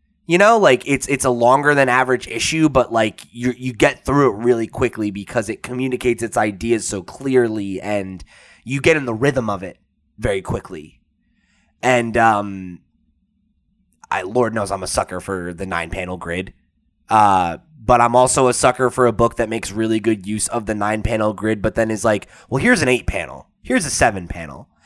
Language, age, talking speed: English, 20-39, 195 wpm